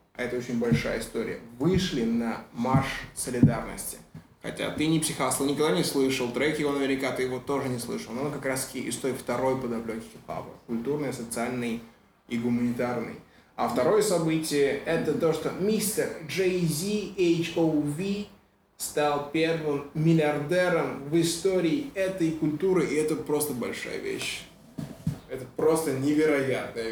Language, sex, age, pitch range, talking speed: Russian, male, 20-39, 120-150 Hz, 135 wpm